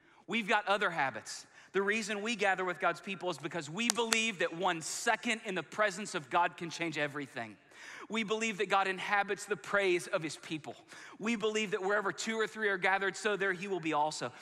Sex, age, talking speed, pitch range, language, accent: male, 30-49, 210 wpm, 165-215 Hz, English, American